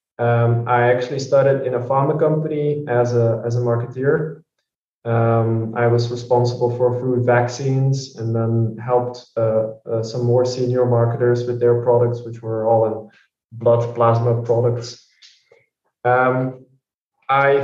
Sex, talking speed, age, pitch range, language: male, 140 wpm, 20-39, 120-135 Hz, English